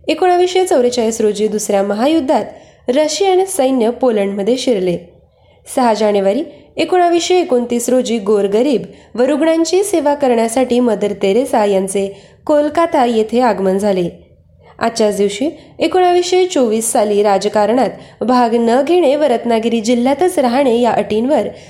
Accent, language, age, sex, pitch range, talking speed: native, Marathi, 20-39, female, 210-295 Hz, 110 wpm